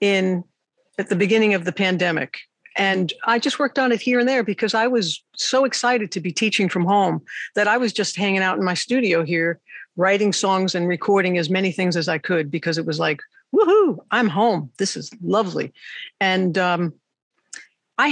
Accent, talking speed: American, 195 wpm